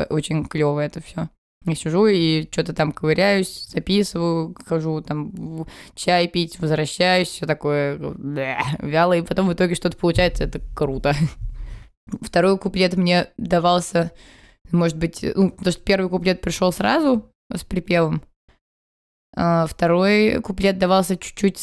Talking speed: 130 wpm